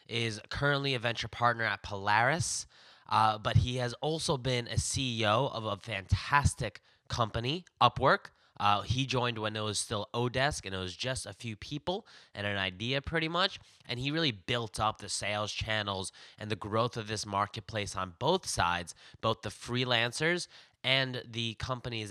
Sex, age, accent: male, 10-29, American